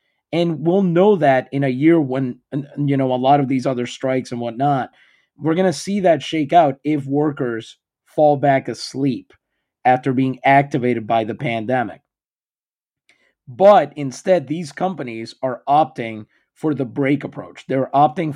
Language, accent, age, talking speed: English, American, 30-49, 155 wpm